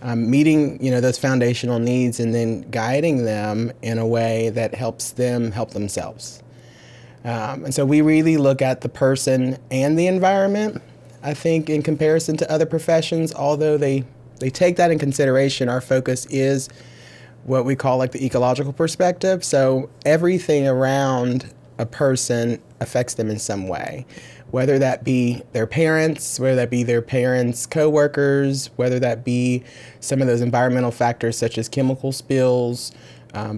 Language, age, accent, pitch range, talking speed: English, 30-49, American, 120-140 Hz, 160 wpm